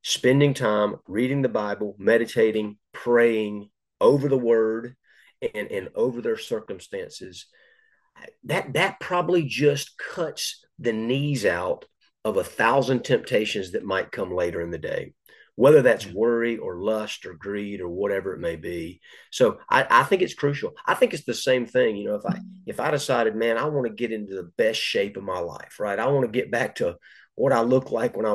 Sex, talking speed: male, 190 wpm